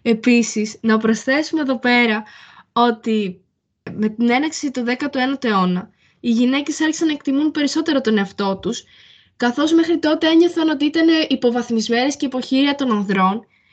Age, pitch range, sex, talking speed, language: 20-39, 225-290 Hz, female, 140 wpm, Greek